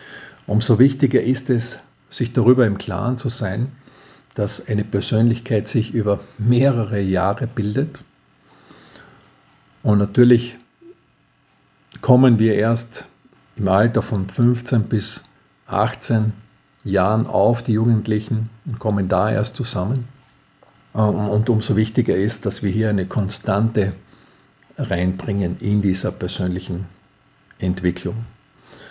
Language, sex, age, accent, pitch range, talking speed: German, male, 50-69, Austrian, 100-125 Hz, 110 wpm